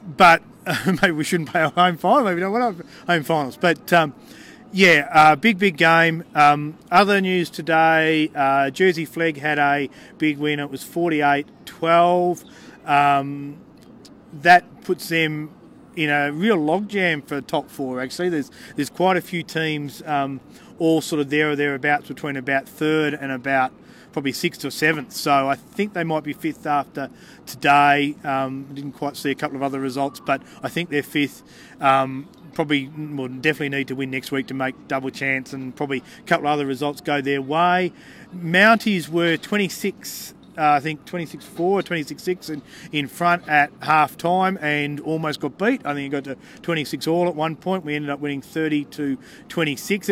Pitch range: 140-175 Hz